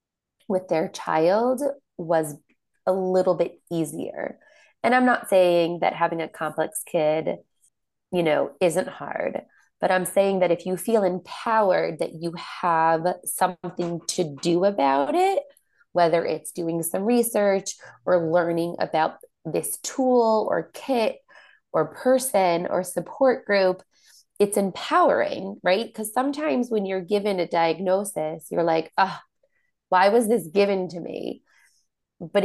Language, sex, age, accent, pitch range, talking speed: English, female, 20-39, American, 170-210 Hz, 135 wpm